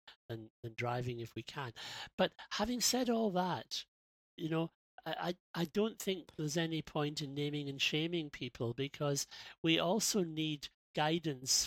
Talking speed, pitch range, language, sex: 155 wpm, 130-160 Hz, English, male